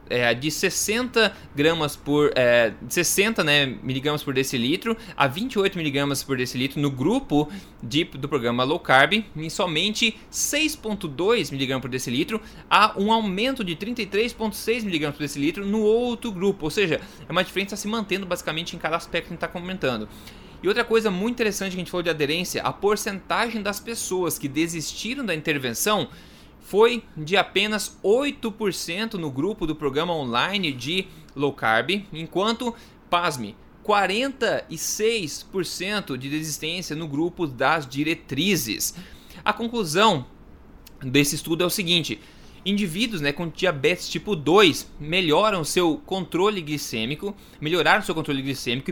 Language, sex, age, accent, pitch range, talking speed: Portuguese, male, 20-39, Brazilian, 145-210 Hz, 130 wpm